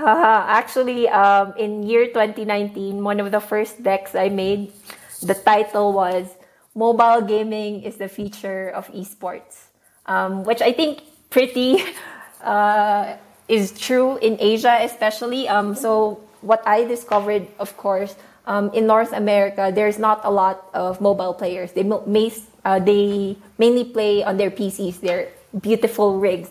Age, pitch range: 20-39, 190-220 Hz